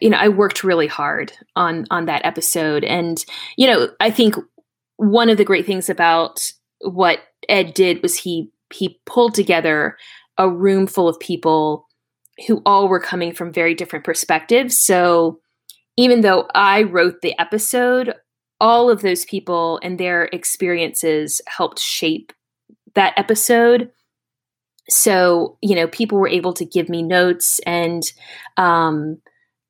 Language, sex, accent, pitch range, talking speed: English, female, American, 165-210 Hz, 145 wpm